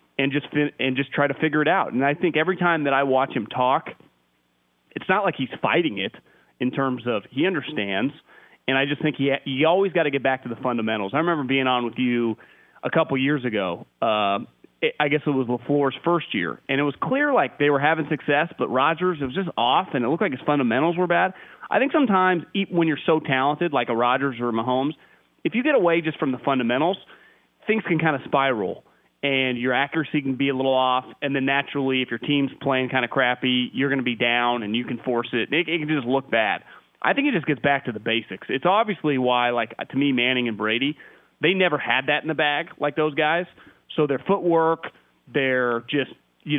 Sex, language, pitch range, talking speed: male, English, 130-160 Hz, 235 wpm